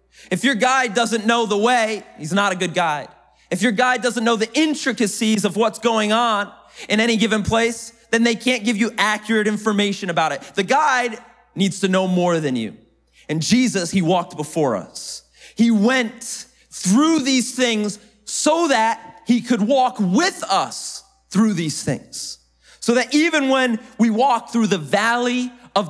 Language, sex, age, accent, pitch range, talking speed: English, male, 30-49, American, 160-235 Hz, 175 wpm